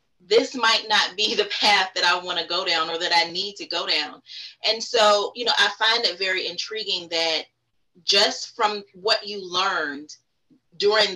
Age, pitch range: 30-49, 170-235 Hz